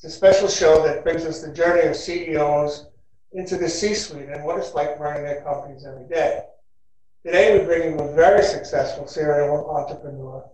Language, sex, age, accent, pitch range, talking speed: English, male, 60-79, American, 145-175 Hz, 175 wpm